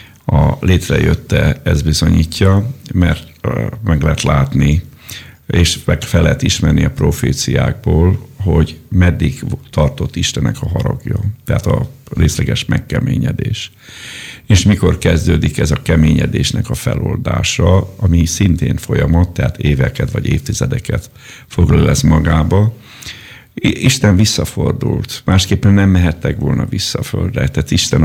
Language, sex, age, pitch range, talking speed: Hungarian, male, 50-69, 80-115 Hz, 110 wpm